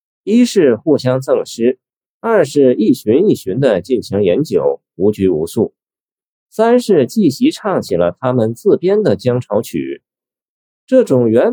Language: Chinese